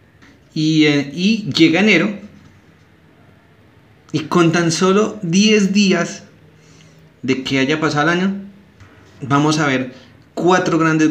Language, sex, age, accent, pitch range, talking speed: Spanish, male, 30-49, Colombian, 115-155 Hz, 115 wpm